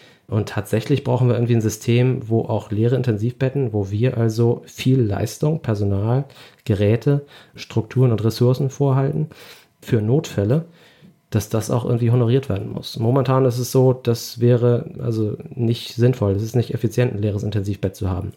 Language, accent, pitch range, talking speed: German, German, 105-130 Hz, 160 wpm